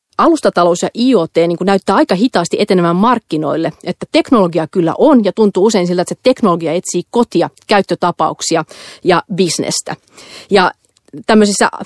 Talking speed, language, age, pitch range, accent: 140 wpm, Finnish, 30-49, 170-210 Hz, native